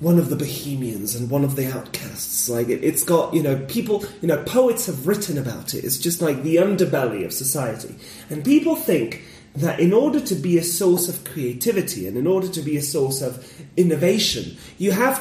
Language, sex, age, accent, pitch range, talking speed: English, male, 30-49, British, 135-185 Hz, 205 wpm